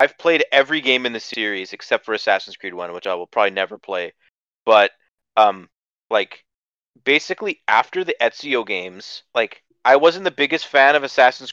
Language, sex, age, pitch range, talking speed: English, male, 30-49, 110-145 Hz, 175 wpm